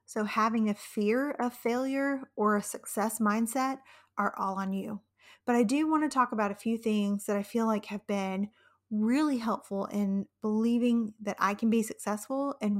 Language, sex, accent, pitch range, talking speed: English, female, American, 205-245 Hz, 190 wpm